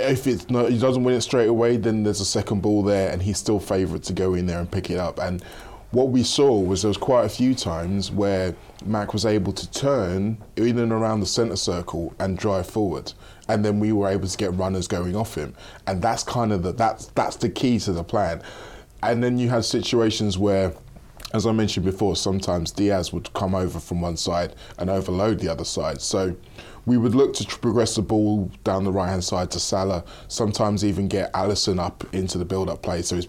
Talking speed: 225 wpm